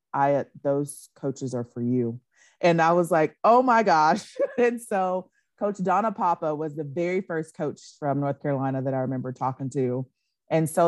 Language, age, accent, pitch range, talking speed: English, 30-49, American, 130-160 Hz, 180 wpm